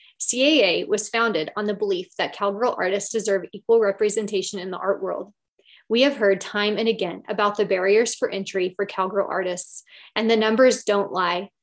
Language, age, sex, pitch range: English, 20-39, female, 195-240 Hz